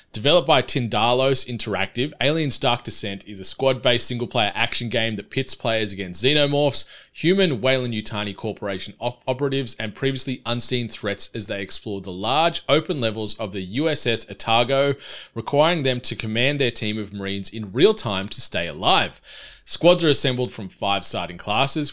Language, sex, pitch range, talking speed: English, male, 105-135 Hz, 160 wpm